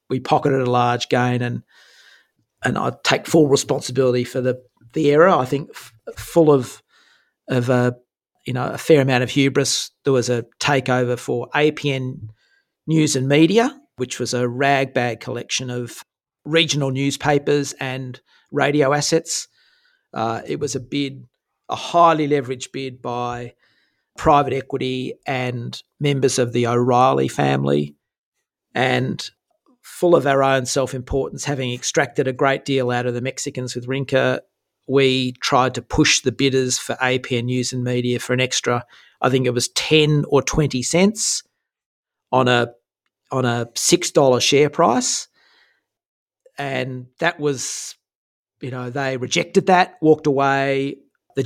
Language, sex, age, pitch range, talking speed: English, male, 50-69, 125-145 Hz, 145 wpm